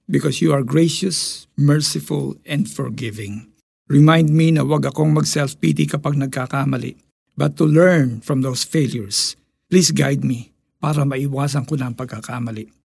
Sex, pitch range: male, 135-175 Hz